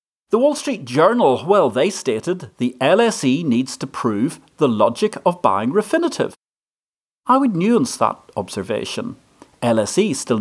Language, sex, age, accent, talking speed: English, male, 40-59, British, 140 wpm